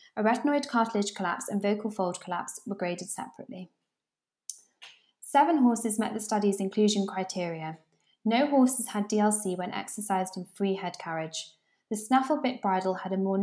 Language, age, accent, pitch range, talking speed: English, 20-39, British, 185-225 Hz, 155 wpm